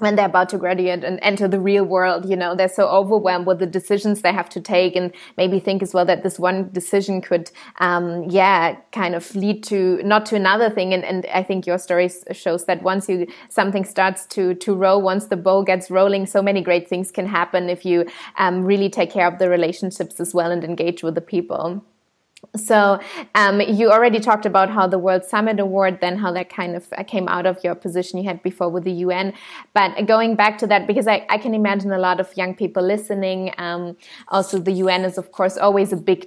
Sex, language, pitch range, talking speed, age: female, English, 180-205 Hz, 225 wpm, 20-39